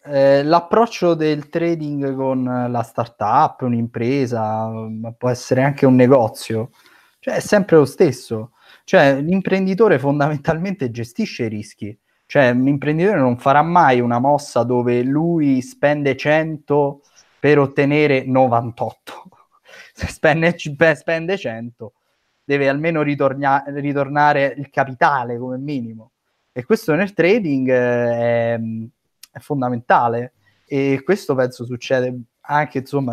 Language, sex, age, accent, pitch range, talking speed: Italian, male, 20-39, native, 120-145 Hz, 120 wpm